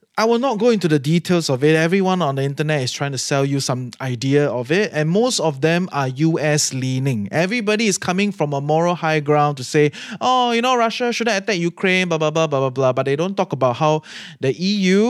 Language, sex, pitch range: English, male, 145-200 Hz